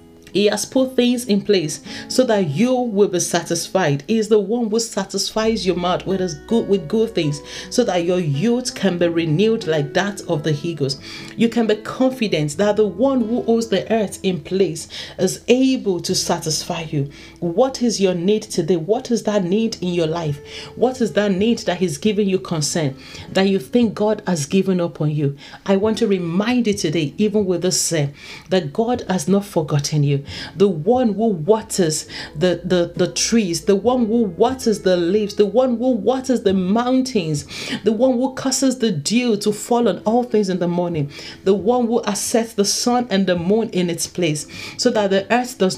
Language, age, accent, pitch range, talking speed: English, 40-59, Nigerian, 175-230 Hz, 195 wpm